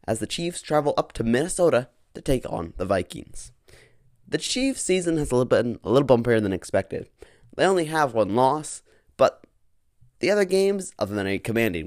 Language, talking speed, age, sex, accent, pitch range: English, 175 wpm, 20-39, male, American, 110-160 Hz